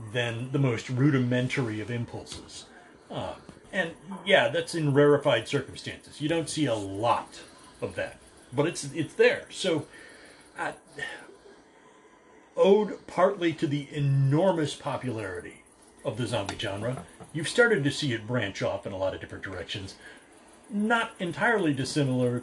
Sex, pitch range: male, 110-145 Hz